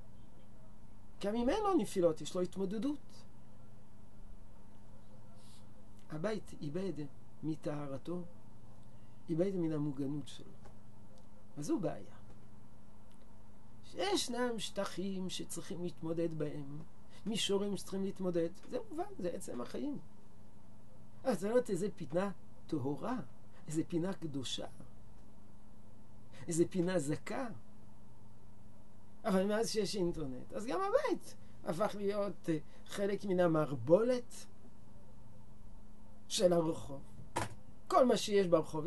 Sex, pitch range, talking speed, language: male, 105-180 Hz, 95 wpm, Hebrew